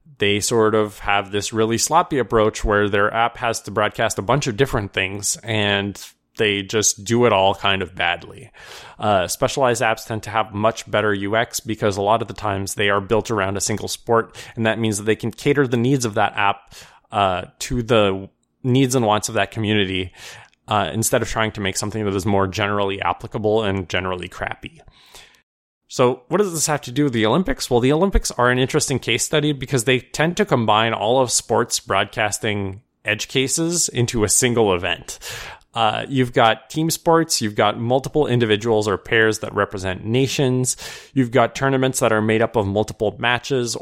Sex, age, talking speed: male, 20-39, 195 wpm